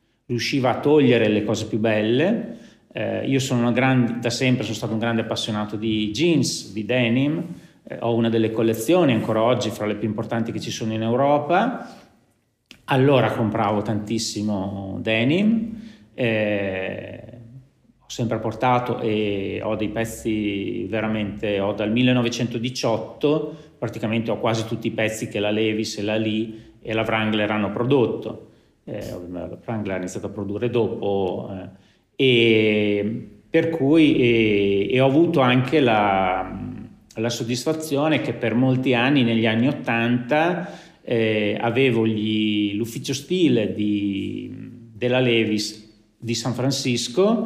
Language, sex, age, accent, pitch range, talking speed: Italian, male, 40-59, native, 110-130 Hz, 130 wpm